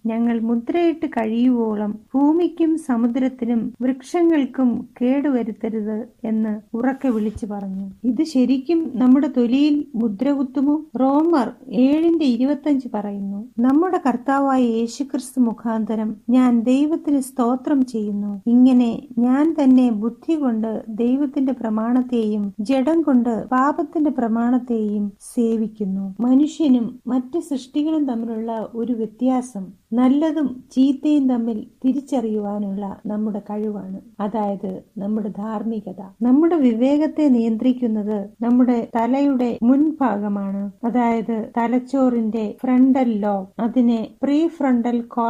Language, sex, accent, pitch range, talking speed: Malayalam, female, native, 220-265 Hz, 90 wpm